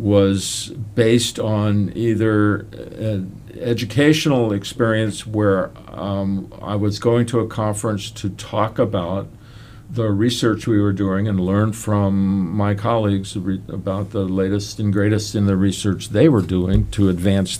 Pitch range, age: 95-115 Hz, 50-69